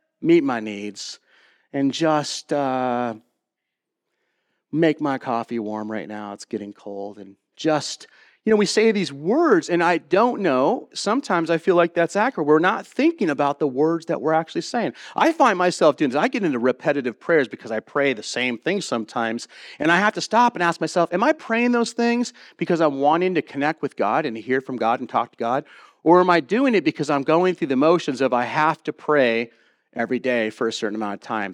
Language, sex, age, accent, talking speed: English, male, 40-59, American, 215 wpm